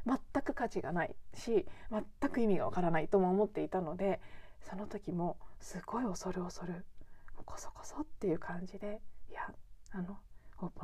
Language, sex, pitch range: Japanese, female, 185-270 Hz